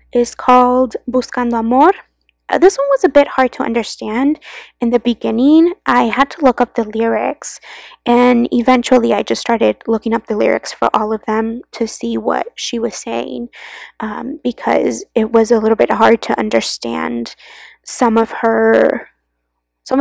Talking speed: 170 wpm